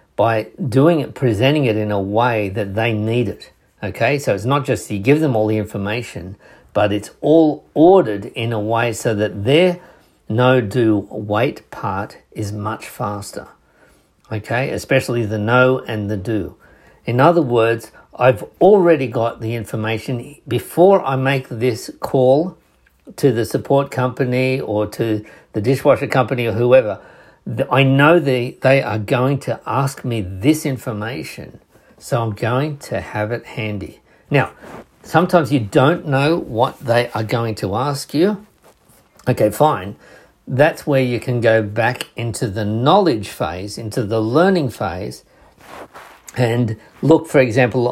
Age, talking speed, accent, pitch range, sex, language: 60-79, 150 wpm, Australian, 110-135 Hz, male, English